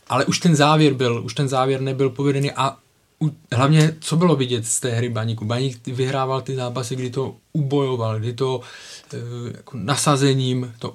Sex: male